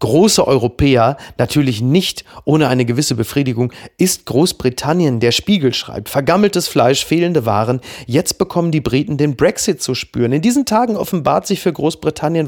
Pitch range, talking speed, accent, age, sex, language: 125-165 Hz, 155 wpm, German, 40-59, male, German